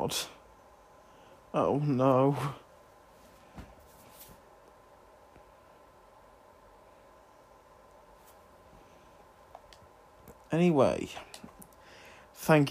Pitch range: 110-145 Hz